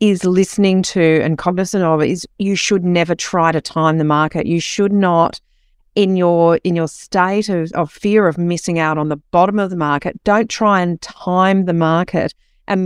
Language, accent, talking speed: English, Australian, 195 wpm